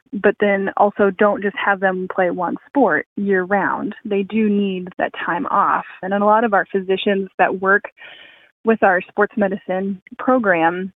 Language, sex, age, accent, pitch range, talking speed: English, female, 10-29, American, 190-220 Hz, 170 wpm